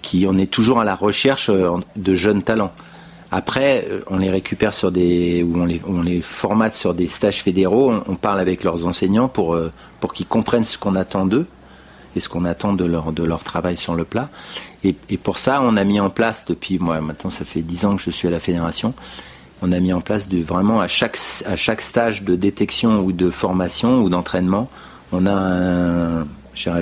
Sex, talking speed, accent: male, 215 wpm, French